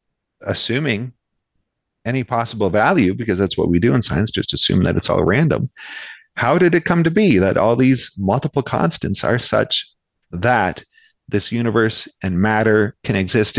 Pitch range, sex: 105-140 Hz, male